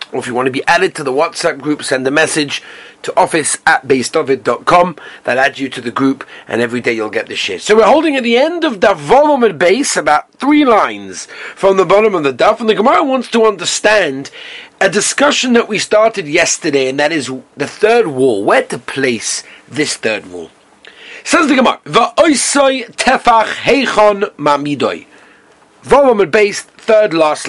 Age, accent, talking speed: 40-59, British, 180 wpm